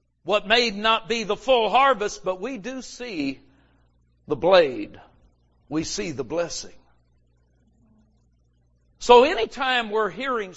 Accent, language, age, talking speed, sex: American, English, 50-69, 120 wpm, male